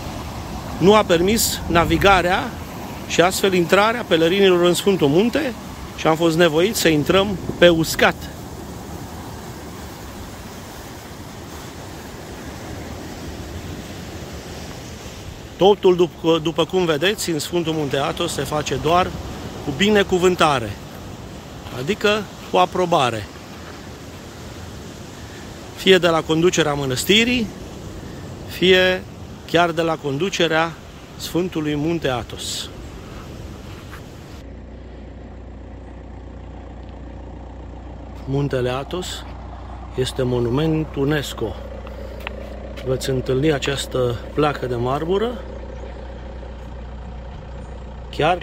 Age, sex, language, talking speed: 40-59, male, Romanian, 75 wpm